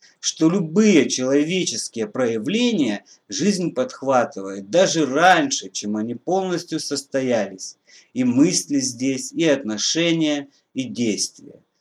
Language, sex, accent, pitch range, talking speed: Russian, male, native, 125-180 Hz, 95 wpm